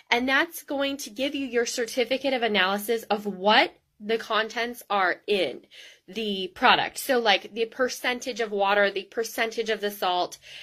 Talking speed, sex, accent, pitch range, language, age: 165 wpm, female, American, 210-280 Hz, English, 20-39